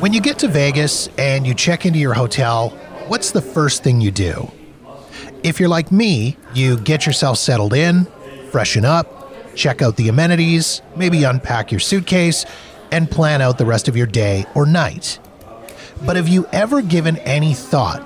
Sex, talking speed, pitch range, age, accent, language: male, 175 wpm, 125-160 Hz, 30-49, American, English